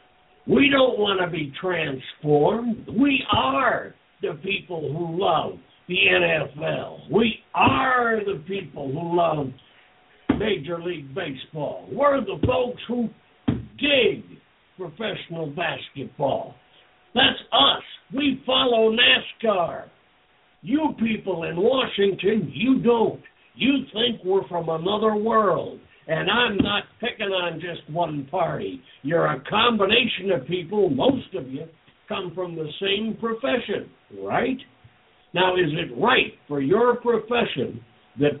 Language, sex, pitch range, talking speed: English, male, 160-230 Hz, 120 wpm